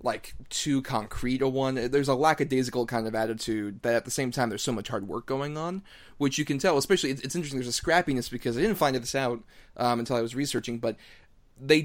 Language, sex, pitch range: English, male, 115-140 Hz